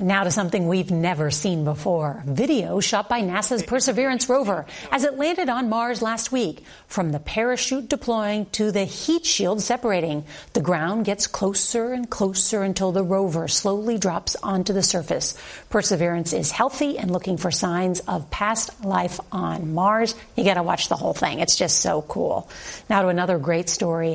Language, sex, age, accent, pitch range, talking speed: English, female, 40-59, American, 175-225 Hz, 175 wpm